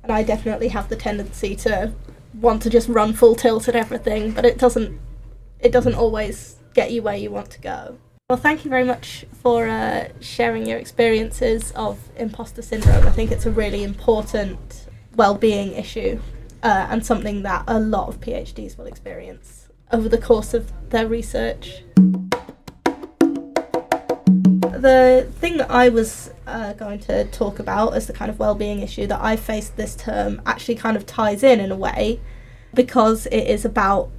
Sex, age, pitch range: female, 10-29, 195-235 Hz